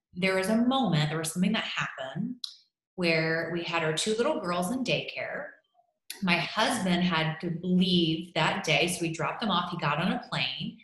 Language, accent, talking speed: English, American, 195 wpm